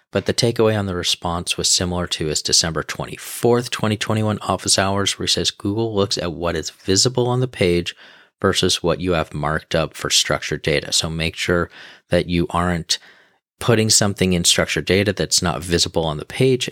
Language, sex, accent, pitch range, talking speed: English, male, American, 85-105 Hz, 190 wpm